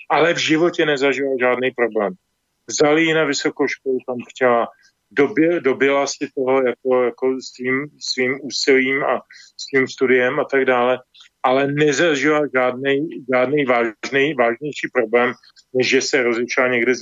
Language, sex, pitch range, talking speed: Slovak, male, 125-150 Hz, 145 wpm